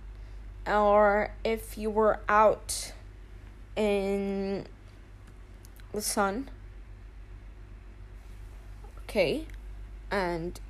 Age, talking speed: 20-39, 55 wpm